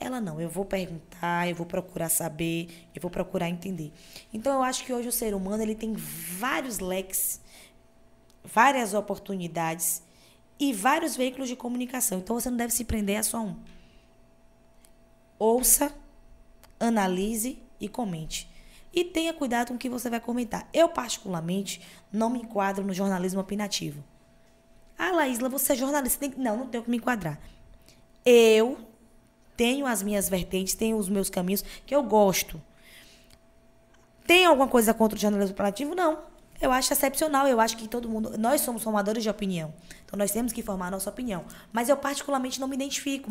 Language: Portuguese